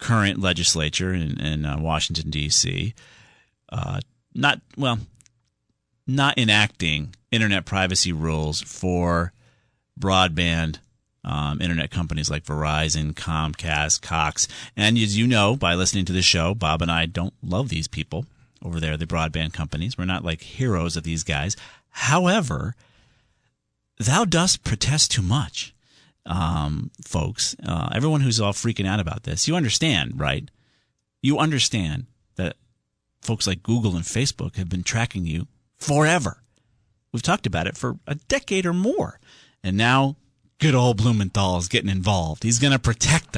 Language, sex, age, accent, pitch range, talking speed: English, male, 40-59, American, 85-125 Hz, 145 wpm